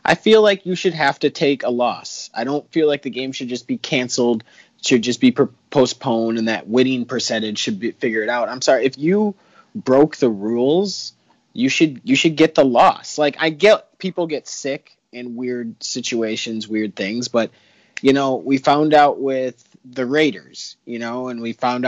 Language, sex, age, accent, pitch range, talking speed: English, male, 30-49, American, 120-155 Hz, 195 wpm